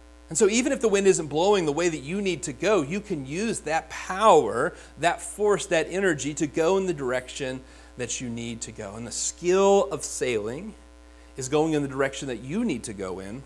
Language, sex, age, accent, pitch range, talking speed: English, male, 30-49, American, 110-170 Hz, 225 wpm